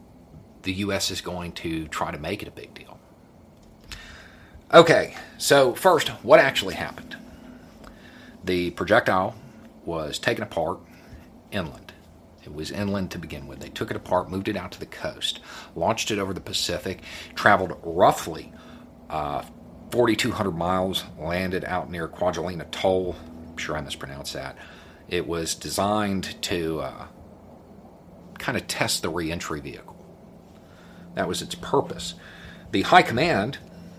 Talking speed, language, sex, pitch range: 140 wpm, English, male, 85-110 Hz